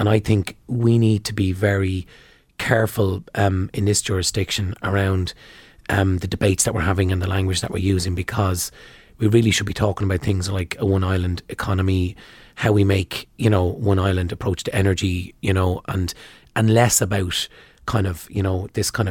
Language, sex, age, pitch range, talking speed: English, male, 30-49, 95-105 Hz, 190 wpm